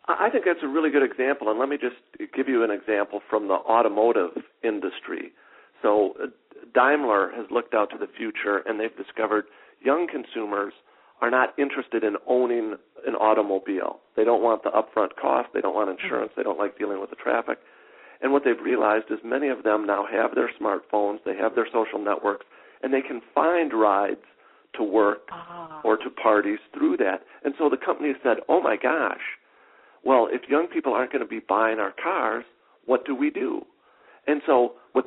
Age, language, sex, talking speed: 50-69, English, male, 190 wpm